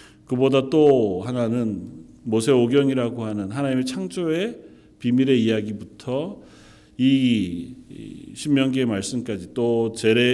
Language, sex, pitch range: Korean, male, 105-155 Hz